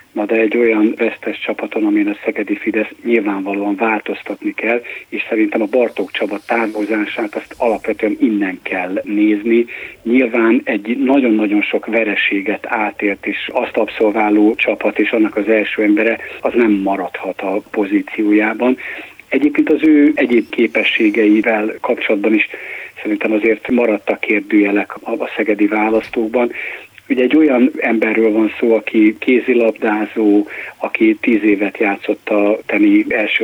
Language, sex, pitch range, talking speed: Hungarian, male, 105-135 Hz, 130 wpm